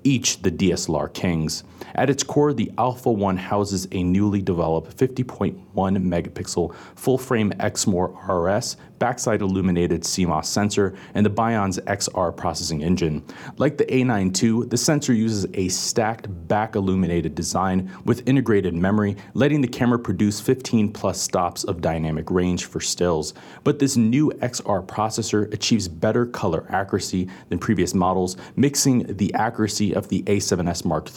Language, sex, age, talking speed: English, male, 30-49, 145 wpm